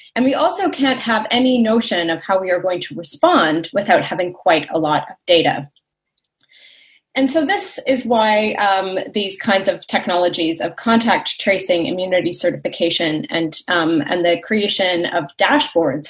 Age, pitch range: 30-49, 180-260 Hz